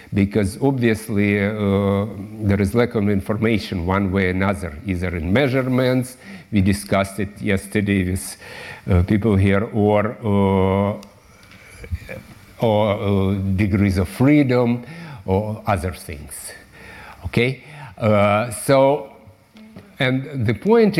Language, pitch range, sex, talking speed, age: French, 100-130 Hz, male, 110 wpm, 60-79